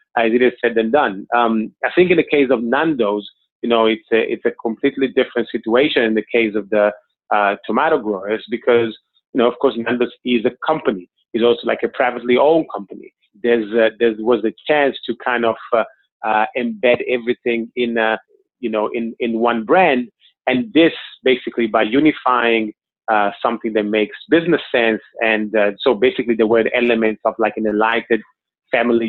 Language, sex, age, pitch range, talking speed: English, male, 30-49, 110-125 Hz, 190 wpm